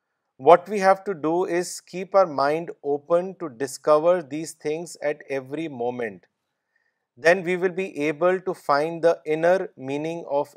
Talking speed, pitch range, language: 160 wpm, 145-175 Hz, Urdu